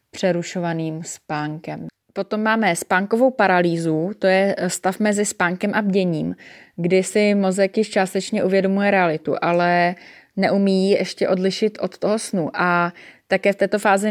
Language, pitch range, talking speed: Czech, 170-195 Hz, 140 wpm